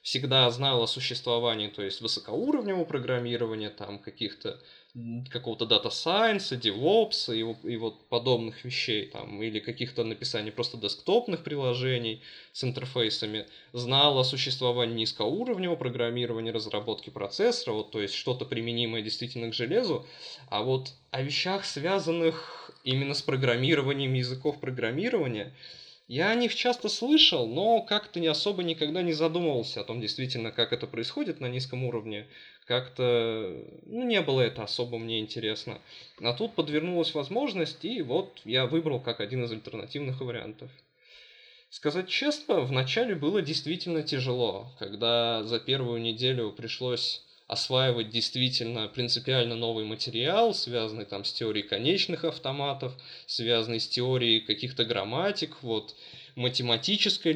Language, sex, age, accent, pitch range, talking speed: Russian, male, 20-39, native, 115-150 Hz, 130 wpm